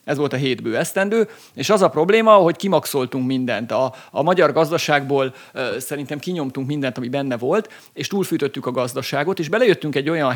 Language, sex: Hungarian, male